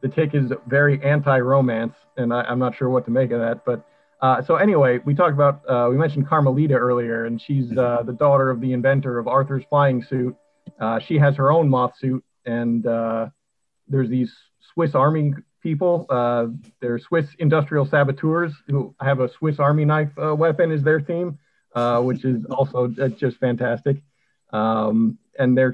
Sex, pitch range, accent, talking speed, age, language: male, 125-150 Hz, American, 175 wpm, 40-59, English